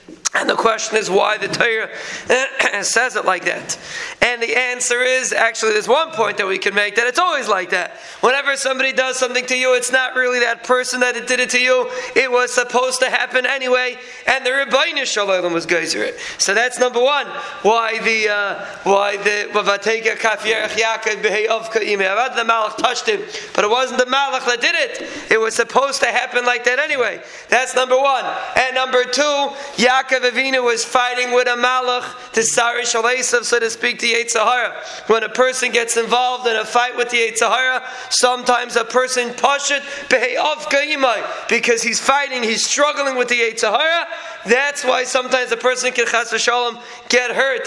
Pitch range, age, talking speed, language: 230-255 Hz, 30-49, 175 wpm, English